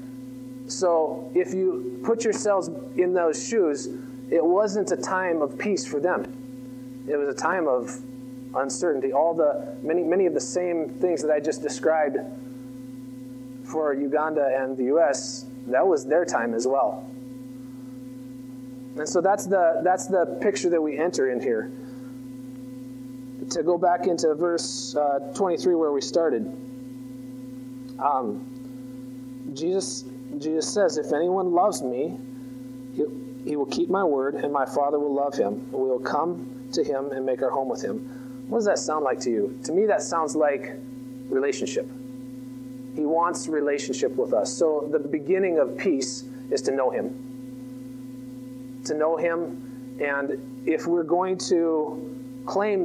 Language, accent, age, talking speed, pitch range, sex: English, American, 30-49, 150 wpm, 130-155 Hz, male